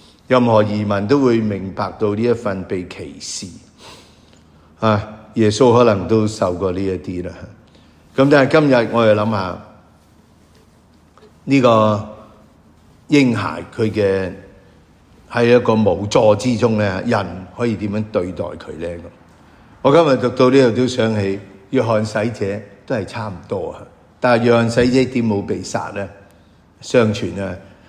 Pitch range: 90-115 Hz